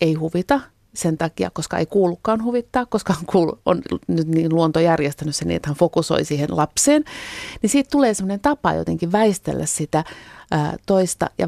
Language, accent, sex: Finnish, native, female